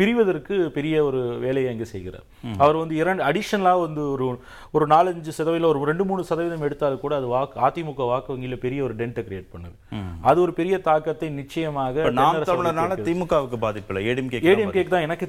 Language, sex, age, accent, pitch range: Tamil, male, 30-49, native, 125-165 Hz